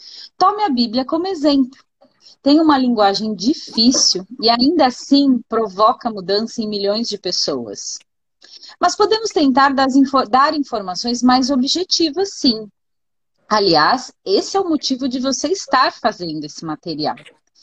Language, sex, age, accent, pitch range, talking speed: Portuguese, female, 30-49, Brazilian, 230-295 Hz, 125 wpm